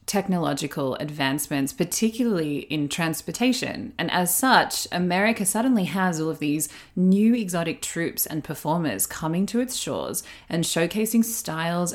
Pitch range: 150-205 Hz